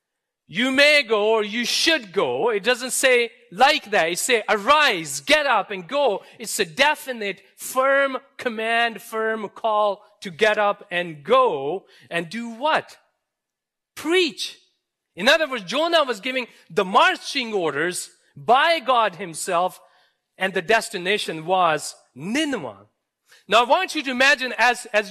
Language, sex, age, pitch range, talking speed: English, male, 40-59, 205-310 Hz, 145 wpm